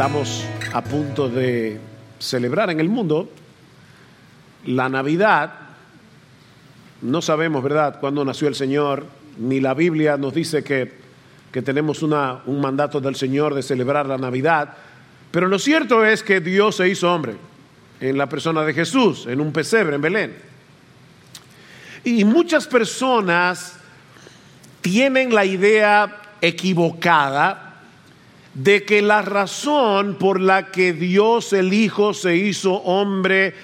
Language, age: English, 50-69